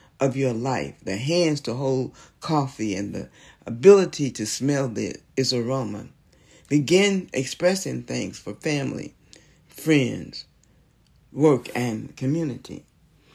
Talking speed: 110 wpm